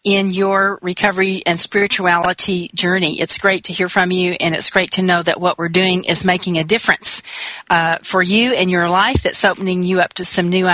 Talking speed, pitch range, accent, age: 210 wpm, 175-200 Hz, American, 40-59